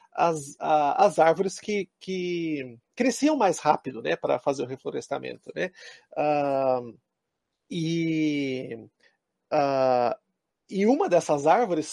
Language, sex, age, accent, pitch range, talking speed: Portuguese, male, 40-59, Brazilian, 160-225 Hz, 110 wpm